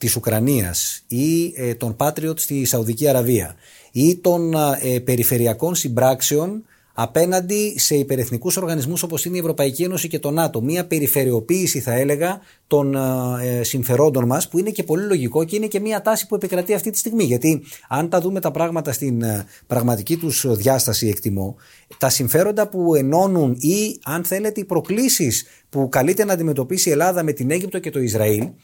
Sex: male